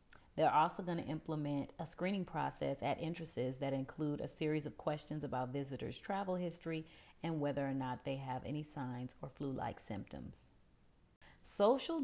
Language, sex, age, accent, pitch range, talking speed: English, female, 40-59, American, 145-185 Hz, 155 wpm